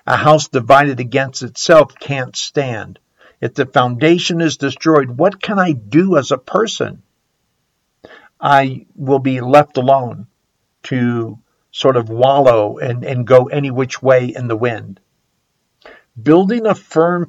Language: English